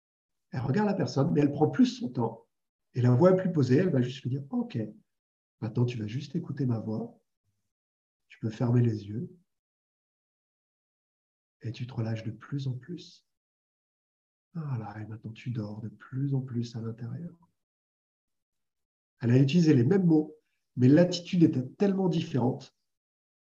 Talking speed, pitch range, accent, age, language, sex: 165 wpm, 120-175 Hz, French, 50-69, French, male